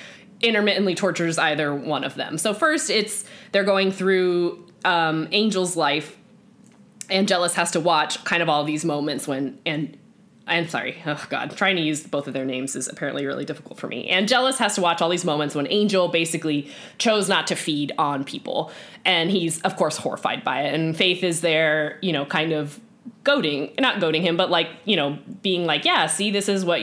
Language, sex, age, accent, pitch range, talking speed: English, female, 10-29, American, 155-210 Hz, 200 wpm